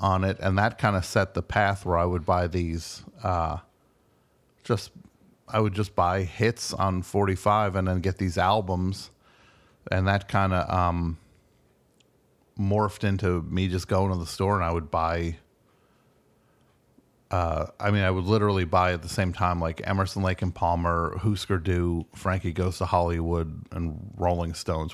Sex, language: male, English